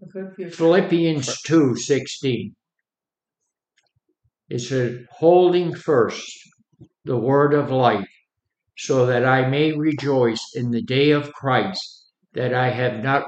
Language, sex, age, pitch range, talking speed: English, male, 60-79, 125-150 Hz, 105 wpm